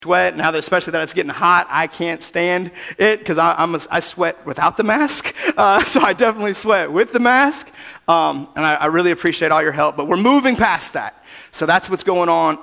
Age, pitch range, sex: 30-49, 165-205 Hz, male